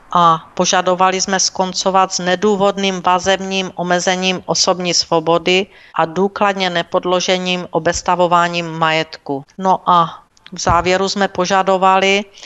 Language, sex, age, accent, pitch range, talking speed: Czech, female, 50-69, native, 170-190 Hz, 100 wpm